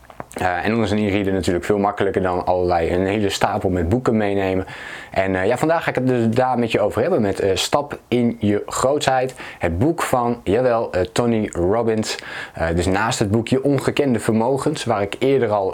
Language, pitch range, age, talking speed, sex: Dutch, 100-125 Hz, 20-39, 200 wpm, male